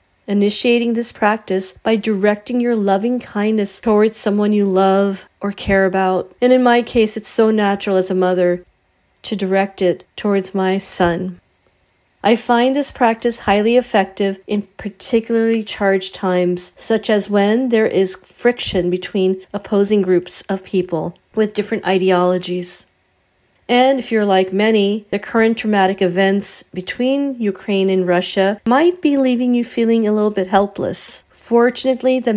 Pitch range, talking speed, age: 190-230 Hz, 145 wpm, 40-59